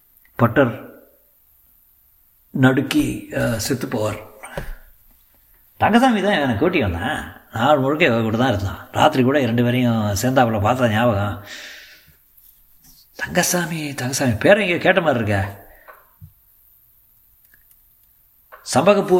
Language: Tamil